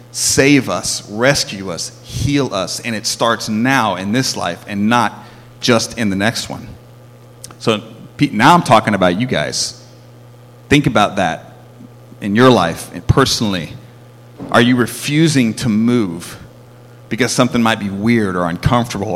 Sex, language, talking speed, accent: male, English, 145 wpm, American